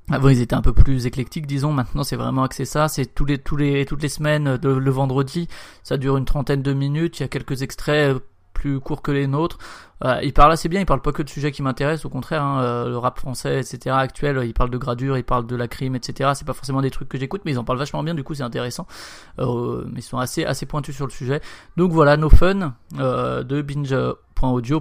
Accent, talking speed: French, 260 wpm